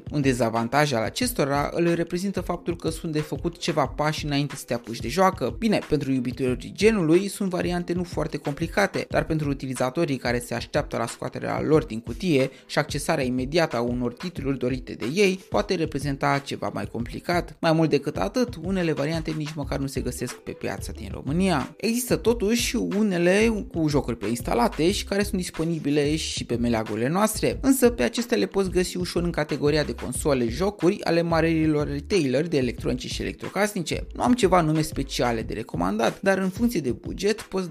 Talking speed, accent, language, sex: 185 wpm, native, Romanian, male